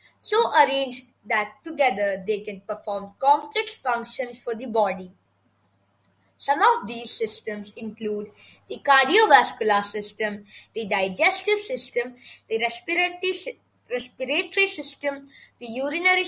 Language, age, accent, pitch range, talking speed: English, 20-39, Indian, 210-305 Hz, 105 wpm